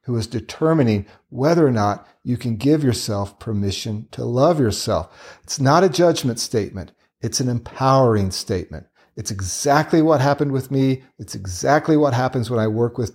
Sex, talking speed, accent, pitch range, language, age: male, 170 wpm, American, 105-135 Hz, English, 40-59